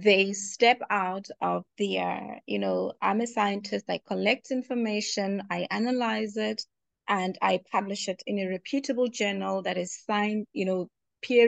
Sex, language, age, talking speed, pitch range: female, English, 20-39, 160 wpm, 190-220 Hz